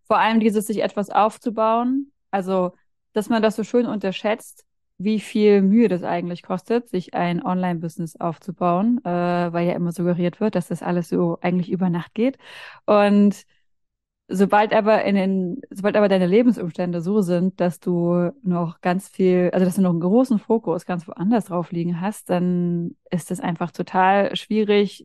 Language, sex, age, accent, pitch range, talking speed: German, female, 20-39, German, 180-215 Hz, 170 wpm